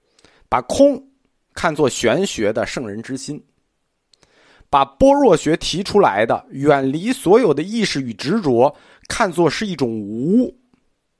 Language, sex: Chinese, male